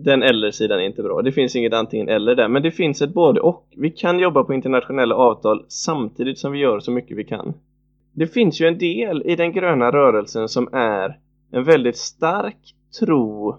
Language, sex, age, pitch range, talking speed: Swedish, male, 20-39, 120-160 Hz, 210 wpm